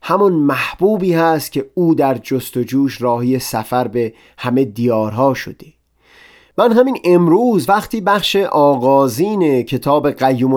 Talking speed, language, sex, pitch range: 130 wpm, Persian, male, 125-170 Hz